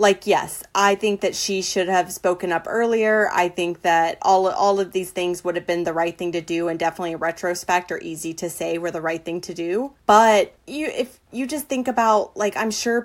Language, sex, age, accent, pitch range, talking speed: English, female, 20-39, American, 175-210 Hz, 235 wpm